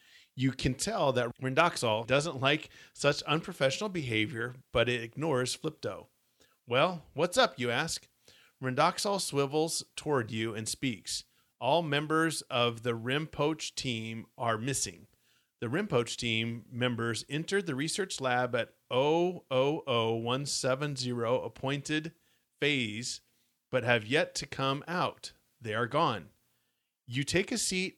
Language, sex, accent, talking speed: English, male, American, 125 wpm